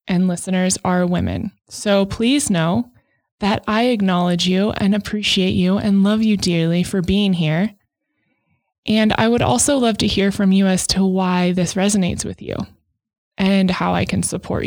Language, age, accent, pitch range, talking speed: English, 20-39, American, 175-200 Hz, 170 wpm